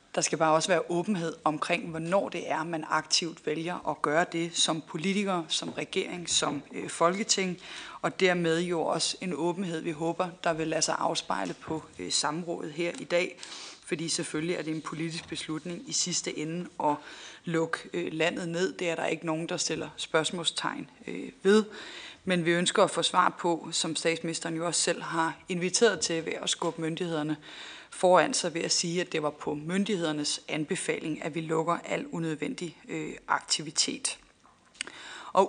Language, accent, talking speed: Danish, native, 170 wpm